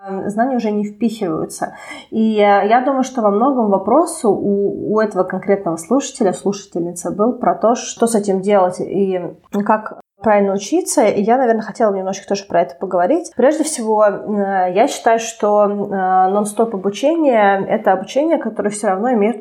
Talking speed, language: 160 wpm, Russian